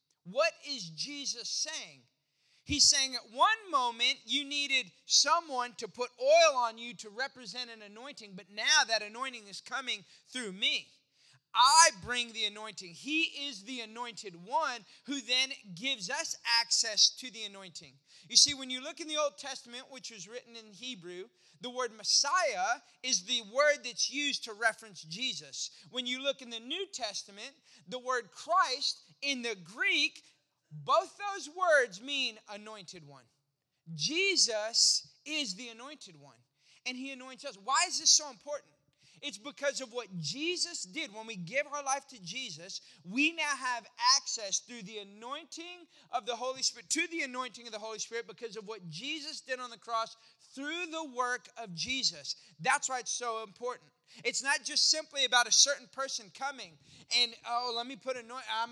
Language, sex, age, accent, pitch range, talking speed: English, male, 30-49, American, 215-280 Hz, 175 wpm